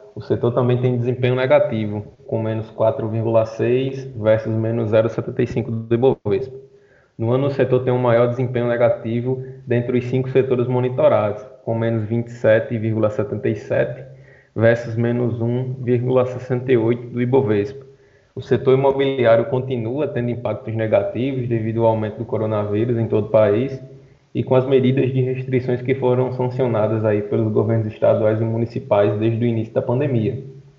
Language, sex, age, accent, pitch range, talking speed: Portuguese, male, 20-39, Brazilian, 115-130 Hz, 140 wpm